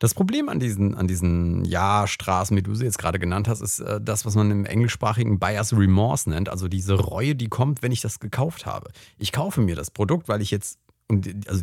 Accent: German